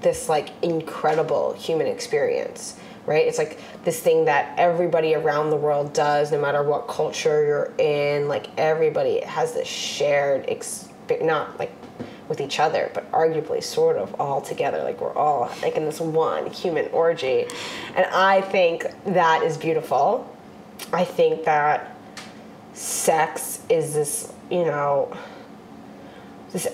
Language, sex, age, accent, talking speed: English, female, 20-39, American, 140 wpm